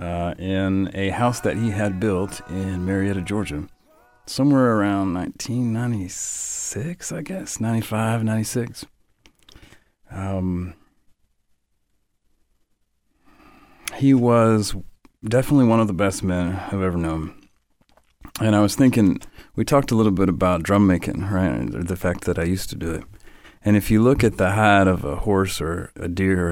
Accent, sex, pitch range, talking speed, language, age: American, male, 90-110 Hz, 145 wpm, English, 40-59